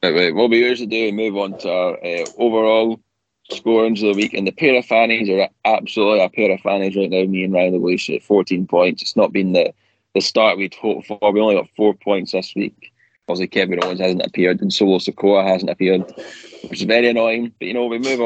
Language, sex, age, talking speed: English, male, 20-39, 245 wpm